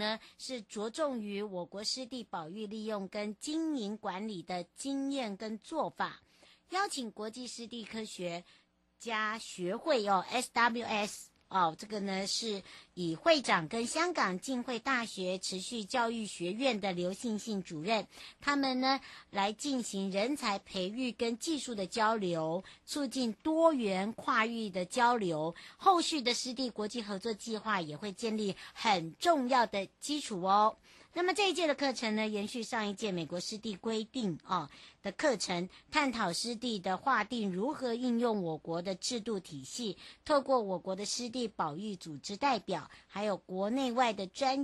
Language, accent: Chinese, American